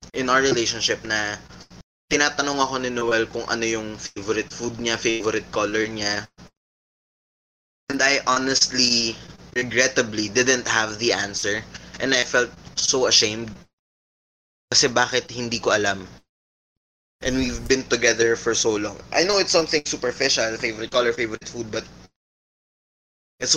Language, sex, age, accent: English, male, 20-39, Filipino